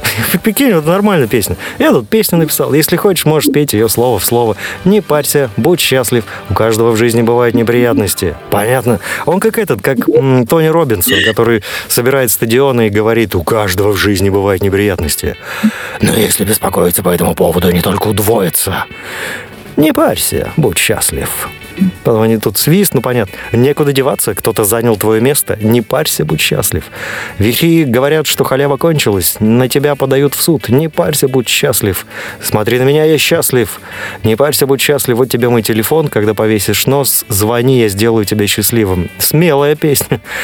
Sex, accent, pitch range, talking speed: male, native, 110-145 Hz, 165 wpm